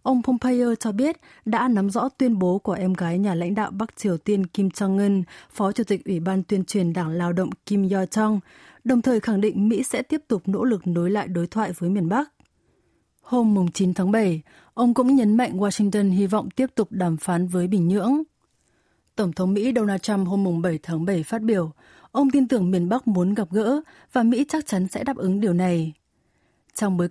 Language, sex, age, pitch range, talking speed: Vietnamese, female, 20-39, 180-225 Hz, 215 wpm